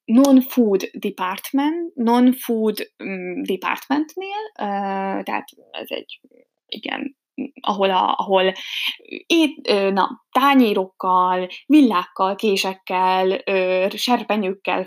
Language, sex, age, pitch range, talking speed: Hungarian, female, 20-39, 185-255 Hz, 75 wpm